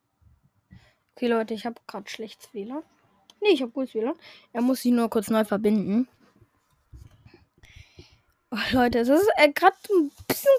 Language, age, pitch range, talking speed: English, 10-29, 225-300 Hz, 155 wpm